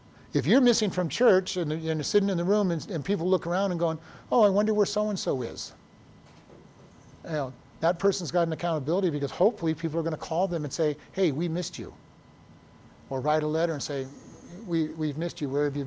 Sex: male